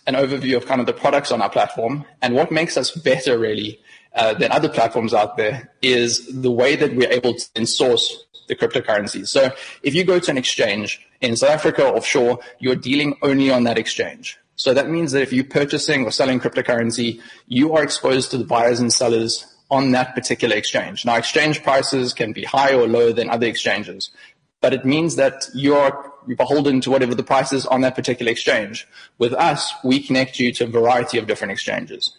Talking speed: 205 wpm